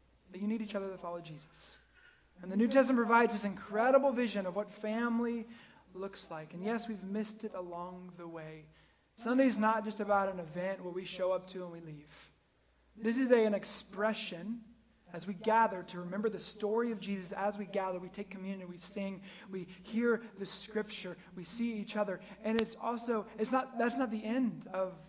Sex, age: male, 20-39